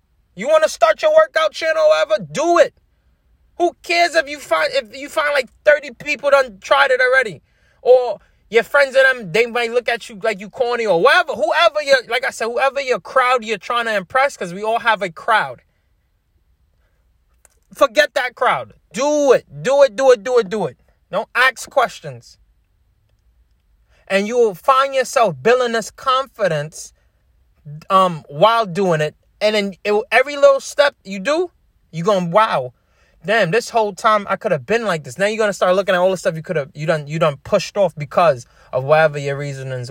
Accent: American